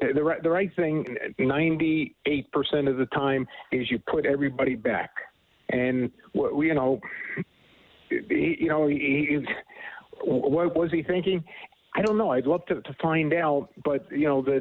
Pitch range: 140-175 Hz